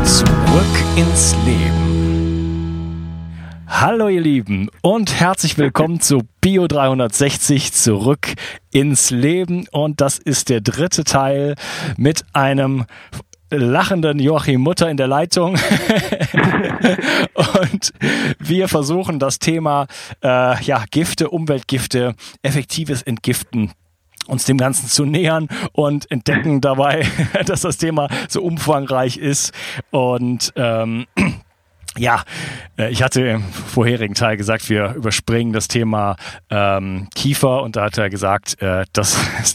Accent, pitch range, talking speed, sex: German, 110-145 Hz, 115 wpm, male